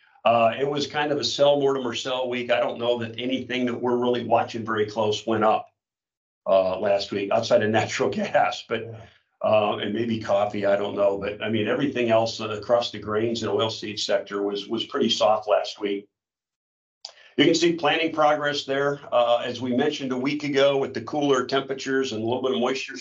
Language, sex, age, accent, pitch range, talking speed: English, male, 50-69, American, 115-135 Hz, 210 wpm